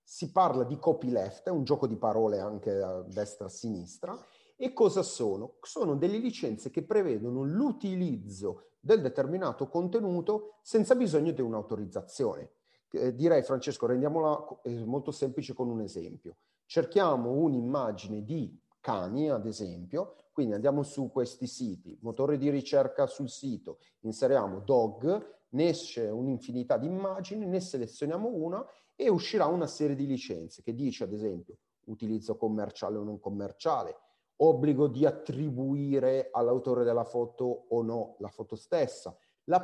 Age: 40-59